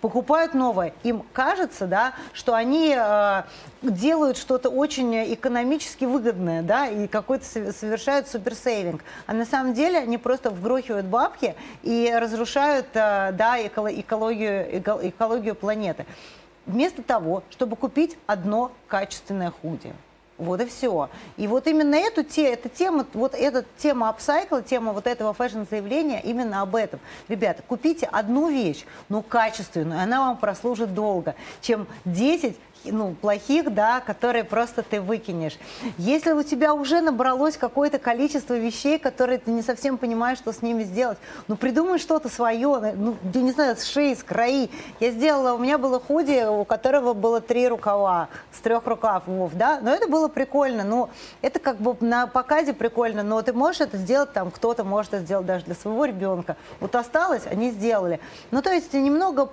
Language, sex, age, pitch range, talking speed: Russian, female, 30-49, 210-270 Hz, 155 wpm